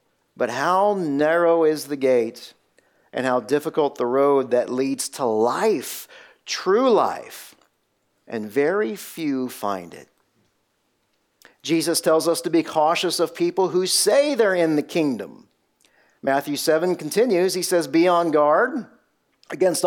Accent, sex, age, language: American, male, 50-69, English